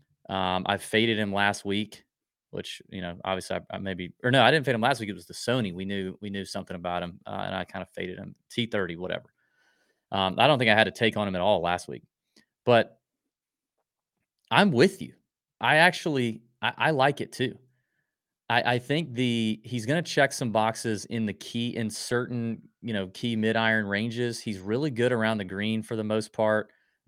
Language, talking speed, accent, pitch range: English, 220 wpm, American, 100-120 Hz